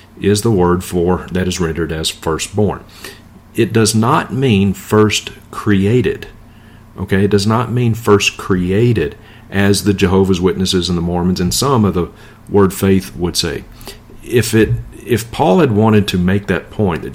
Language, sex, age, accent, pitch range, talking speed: English, male, 40-59, American, 95-110 Hz, 170 wpm